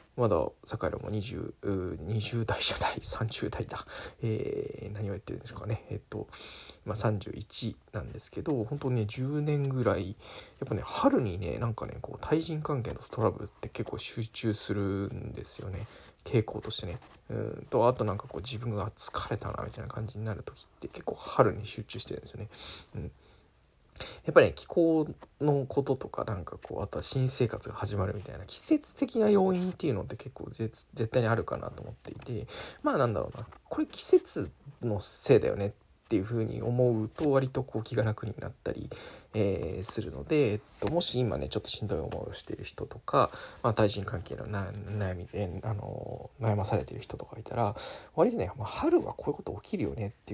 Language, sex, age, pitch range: Japanese, male, 20-39, 105-135 Hz